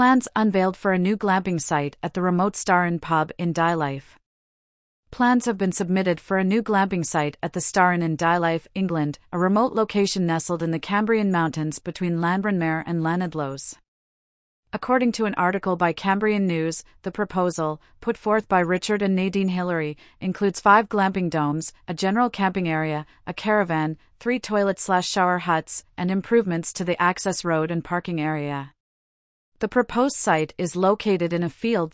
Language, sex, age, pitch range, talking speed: English, female, 30-49, 165-200 Hz, 165 wpm